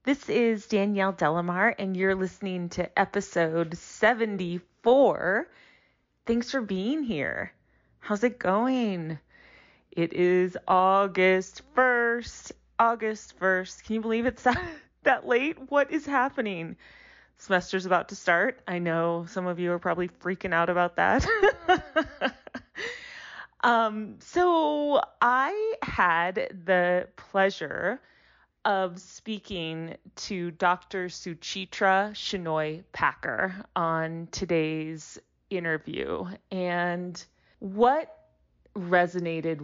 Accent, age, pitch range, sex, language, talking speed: American, 30-49, 170-220 Hz, female, English, 100 wpm